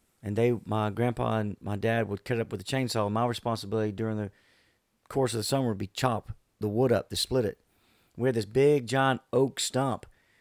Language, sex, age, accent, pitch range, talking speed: English, male, 40-59, American, 110-130 Hz, 220 wpm